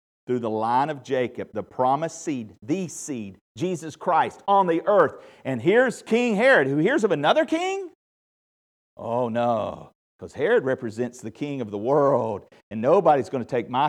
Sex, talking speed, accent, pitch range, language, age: male, 175 wpm, American, 105-160 Hz, English, 50-69